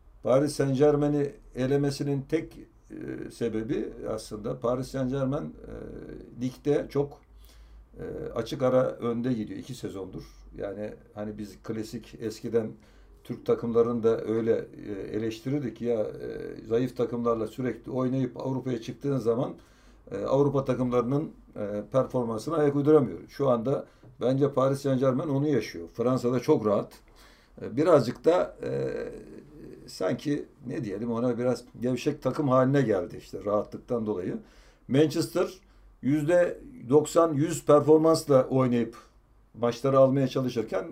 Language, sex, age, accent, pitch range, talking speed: Turkish, male, 60-79, native, 115-145 Hz, 120 wpm